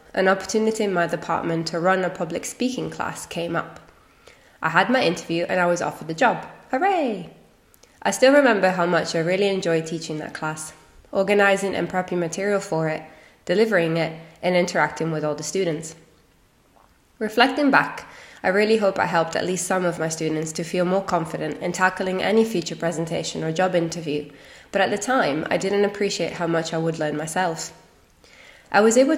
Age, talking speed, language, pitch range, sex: 20-39, 185 wpm, English, 160-200 Hz, female